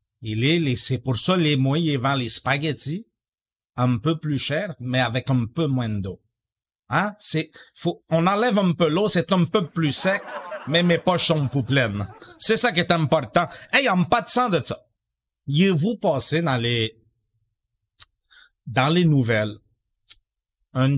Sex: male